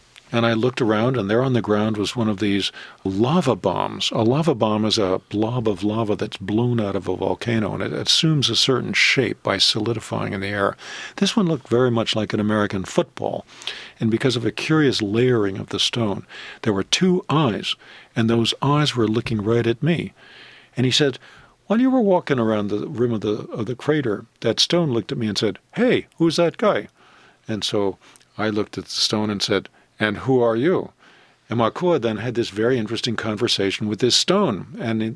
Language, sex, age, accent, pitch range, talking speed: English, male, 50-69, American, 110-130 Hz, 205 wpm